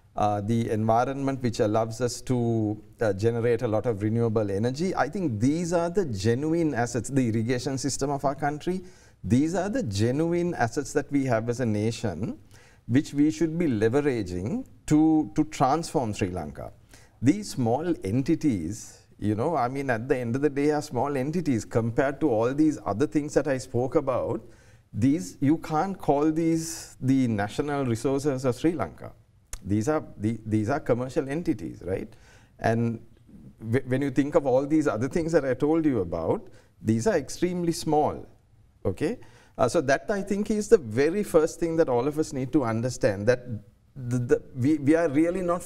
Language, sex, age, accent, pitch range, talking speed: English, male, 50-69, Indian, 115-155 Hz, 180 wpm